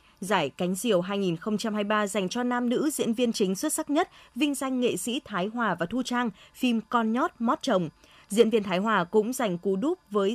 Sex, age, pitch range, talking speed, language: female, 20-39, 195-255 Hz, 215 wpm, Vietnamese